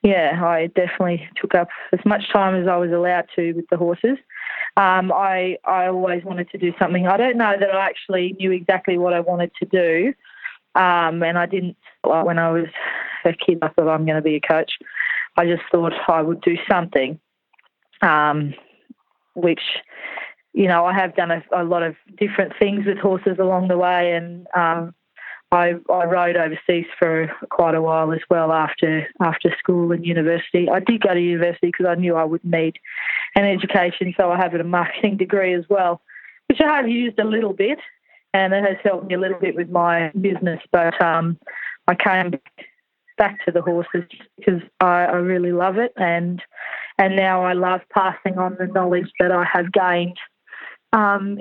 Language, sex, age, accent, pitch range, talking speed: English, female, 20-39, Australian, 170-195 Hz, 195 wpm